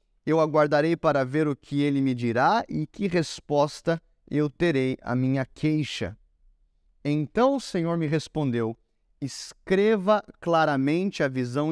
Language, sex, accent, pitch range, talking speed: Portuguese, male, Brazilian, 130-175 Hz, 135 wpm